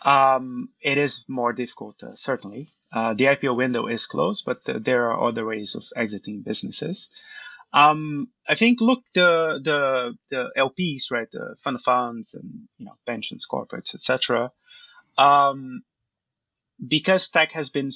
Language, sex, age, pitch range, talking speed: English, male, 20-39, 120-145 Hz, 150 wpm